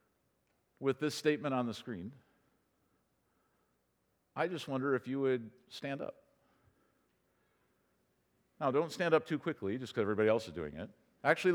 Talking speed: 145 wpm